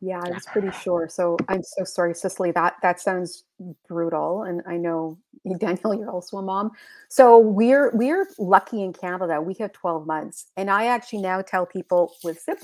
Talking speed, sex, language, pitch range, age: 185 wpm, female, English, 180-230 Hz, 30-49